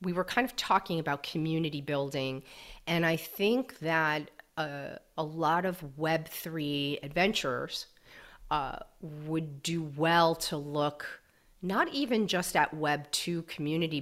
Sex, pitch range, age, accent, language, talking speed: female, 145-175 Hz, 40-59, American, English, 130 wpm